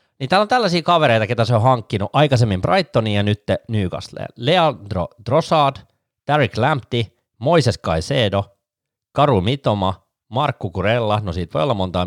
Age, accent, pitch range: 30-49, native, 95-135 Hz